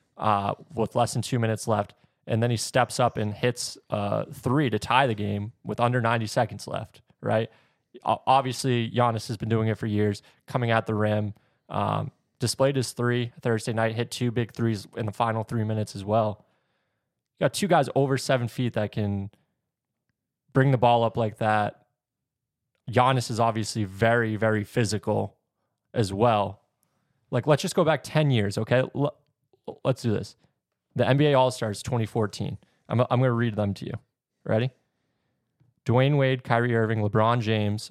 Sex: male